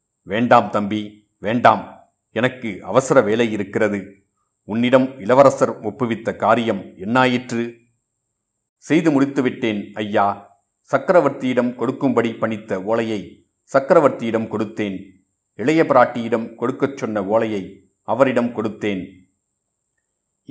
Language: Tamil